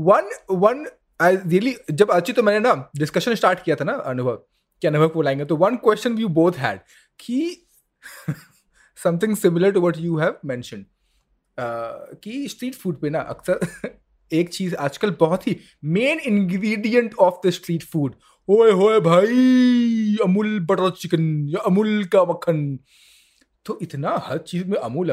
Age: 30-49